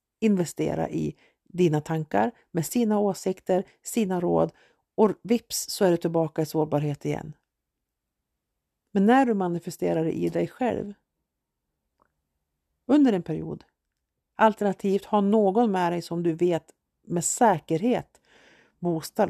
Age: 50-69